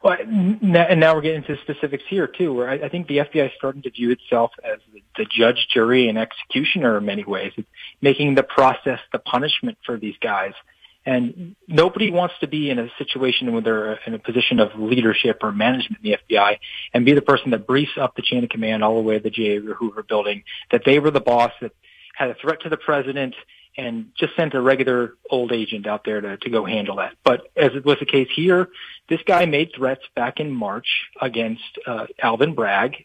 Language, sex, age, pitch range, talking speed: English, male, 30-49, 120-155 Hz, 220 wpm